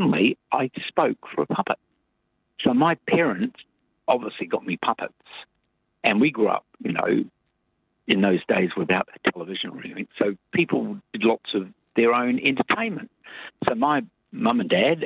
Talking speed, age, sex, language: 155 wpm, 50-69, male, English